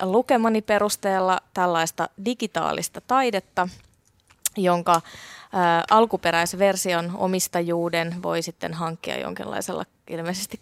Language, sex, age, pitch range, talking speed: Finnish, female, 20-39, 170-215 Hz, 75 wpm